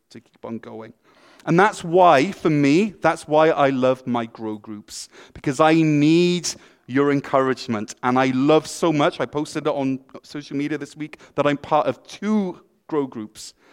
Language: English